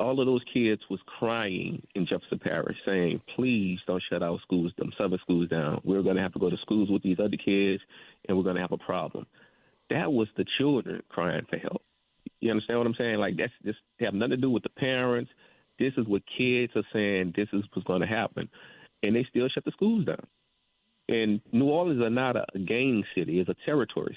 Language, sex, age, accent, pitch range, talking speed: English, male, 30-49, American, 100-125 Hz, 225 wpm